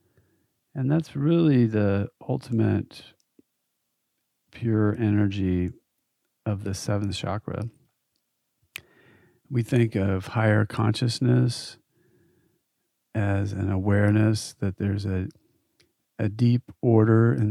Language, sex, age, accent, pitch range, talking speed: English, male, 40-59, American, 100-120 Hz, 90 wpm